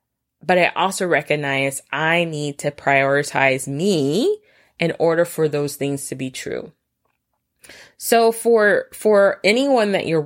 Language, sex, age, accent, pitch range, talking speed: English, female, 20-39, American, 150-195 Hz, 135 wpm